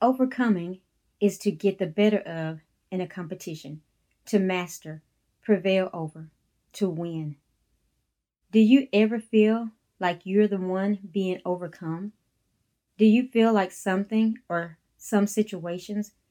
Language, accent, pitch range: English, American, 170-210 Hz